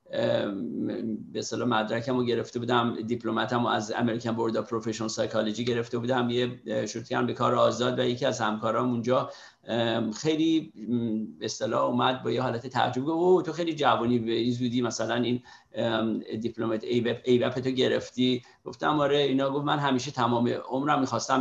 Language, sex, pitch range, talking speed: Persian, male, 120-150 Hz, 165 wpm